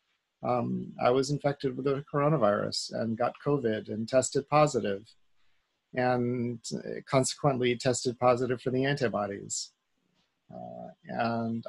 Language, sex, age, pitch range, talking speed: English, male, 40-59, 120-145 Hz, 115 wpm